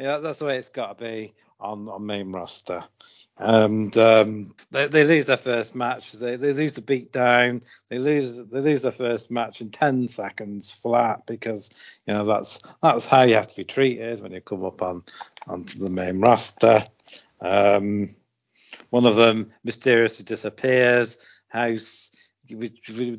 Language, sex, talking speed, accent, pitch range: English, male, 170 wpm, British, 105-120 Hz